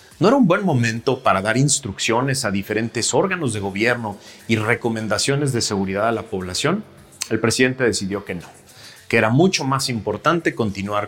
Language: Spanish